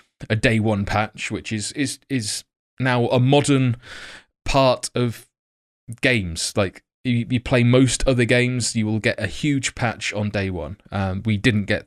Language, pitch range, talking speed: English, 105-130 Hz, 170 wpm